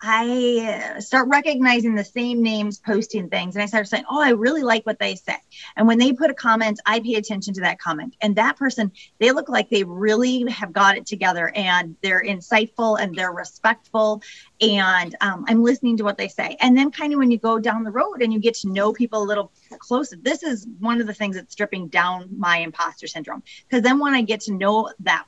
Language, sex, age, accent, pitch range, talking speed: English, female, 30-49, American, 210-255 Hz, 230 wpm